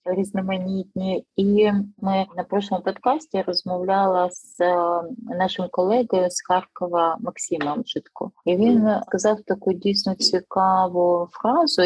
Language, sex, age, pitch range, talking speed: Ukrainian, female, 30-49, 175-210 Hz, 105 wpm